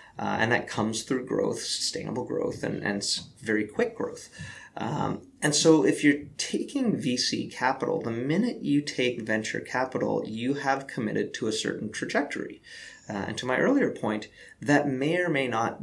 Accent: American